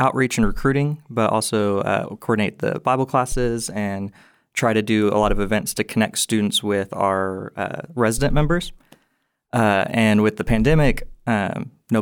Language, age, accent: English, 20-39, American